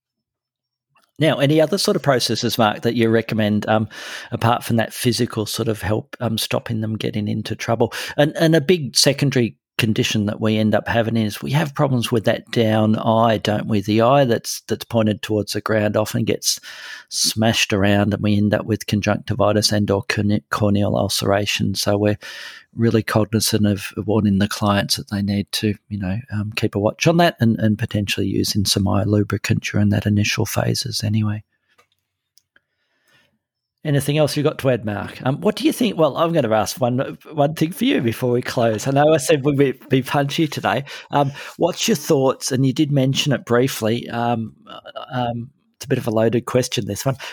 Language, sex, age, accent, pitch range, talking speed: English, male, 40-59, Australian, 105-130 Hz, 195 wpm